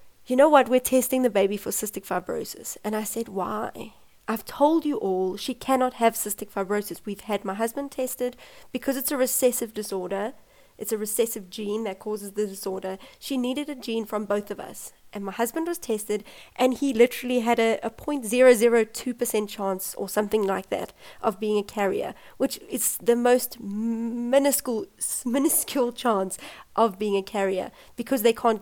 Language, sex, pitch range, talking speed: English, female, 210-260 Hz, 175 wpm